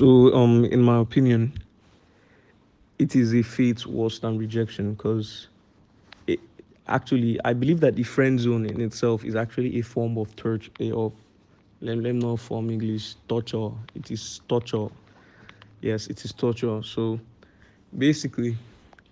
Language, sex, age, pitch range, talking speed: English, male, 20-39, 110-125 Hz, 135 wpm